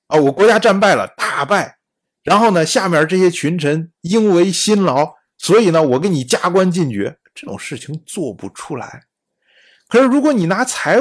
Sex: male